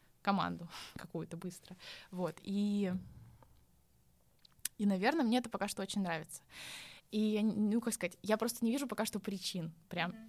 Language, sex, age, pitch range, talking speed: Russian, female, 20-39, 175-210 Hz, 145 wpm